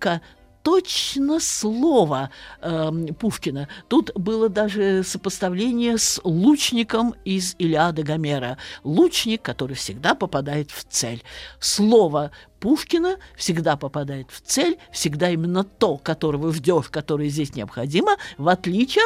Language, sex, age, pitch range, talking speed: Russian, male, 50-69, 155-230 Hz, 110 wpm